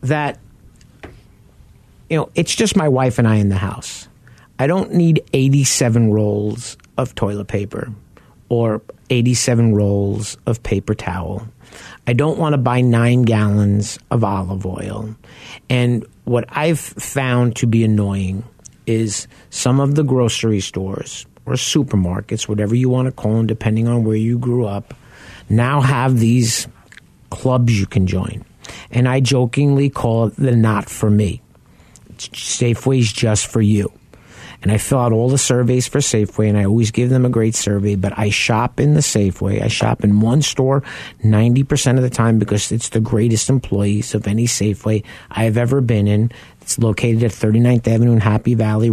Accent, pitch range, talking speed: American, 105-125 Hz, 165 wpm